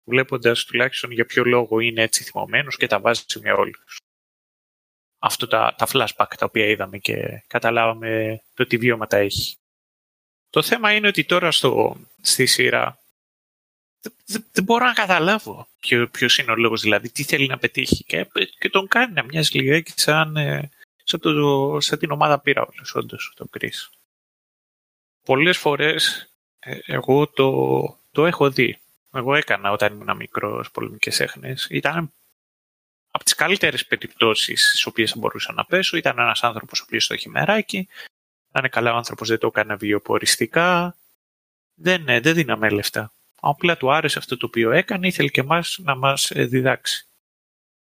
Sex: male